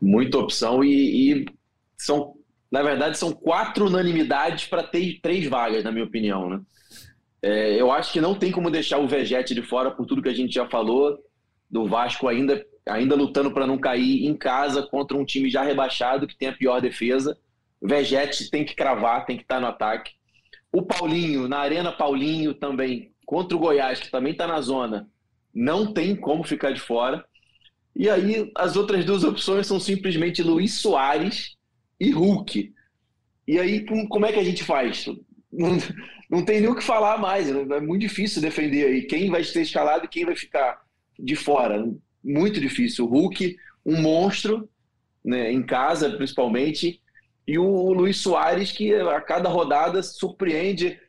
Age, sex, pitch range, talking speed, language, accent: 20-39, male, 135-190 Hz, 175 wpm, Portuguese, Brazilian